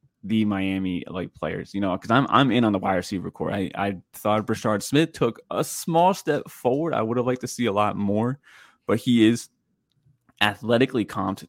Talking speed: 205 wpm